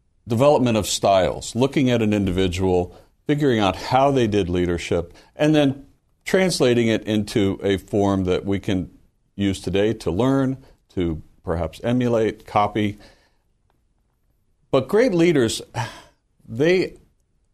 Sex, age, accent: male, 60-79, American